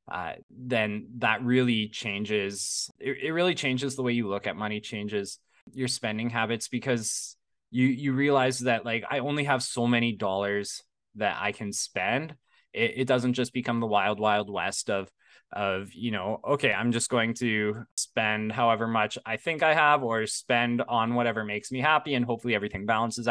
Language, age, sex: English, 20-39, male